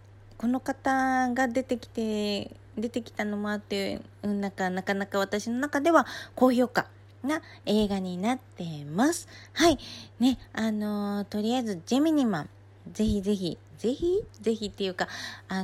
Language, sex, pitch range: Japanese, female, 190-255 Hz